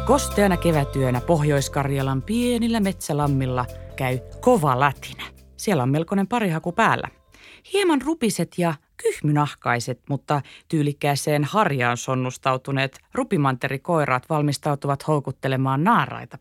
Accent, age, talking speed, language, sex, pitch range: native, 30-49, 90 wpm, Finnish, female, 130-195 Hz